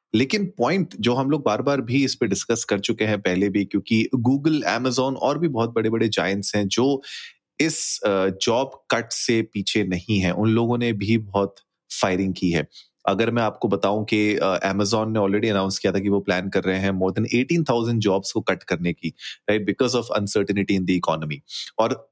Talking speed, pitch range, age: 165 wpm, 100-125 Hz, 30-49